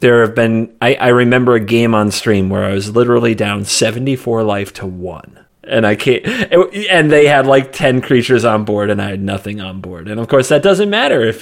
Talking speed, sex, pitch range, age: 230 wpm, male, 100-125 Hz, 30-49